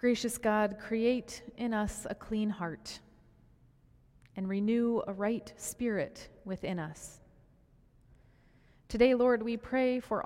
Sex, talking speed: female, 115 wpm